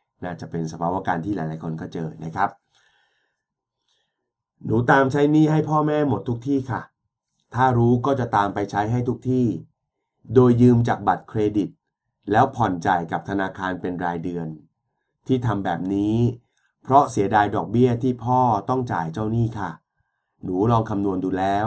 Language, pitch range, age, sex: Thai, 95-125 Hz, 30-49, male